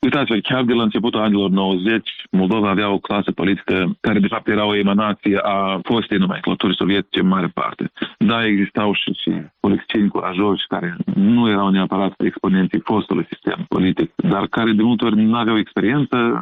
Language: Romanian